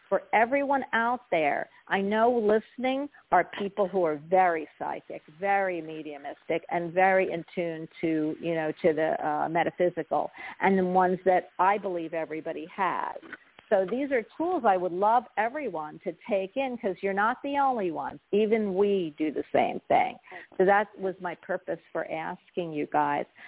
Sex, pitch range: female, 170-205 Hz